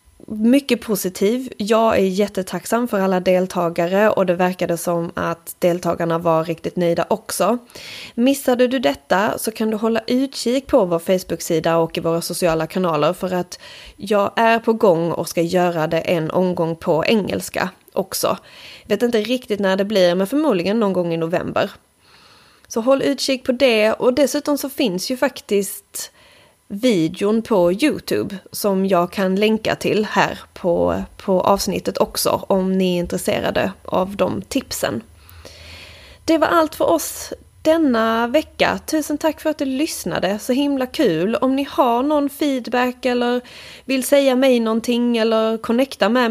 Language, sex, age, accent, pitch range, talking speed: Swedish, female, 30-49, native, 180-250 Hz, 160 wpm